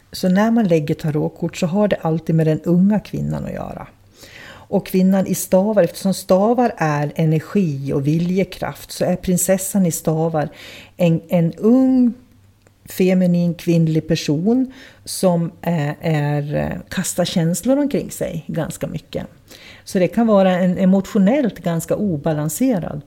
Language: Swedish